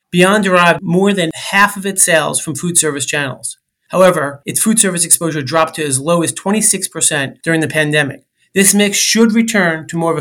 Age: 30-49